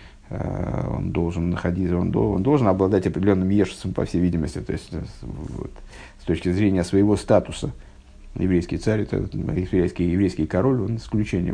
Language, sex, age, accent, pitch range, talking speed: Russian, male, 50-69, native, 95-120 Hz, 140 wpm